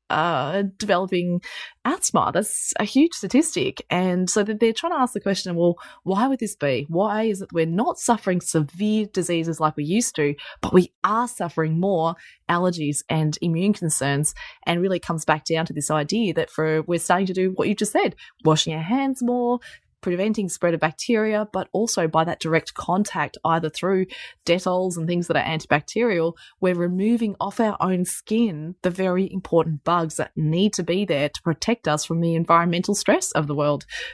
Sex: female